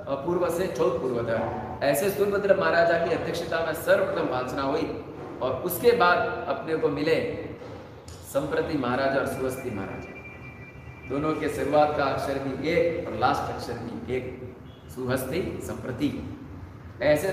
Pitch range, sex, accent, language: 135-175 Hz, male, native, Hindi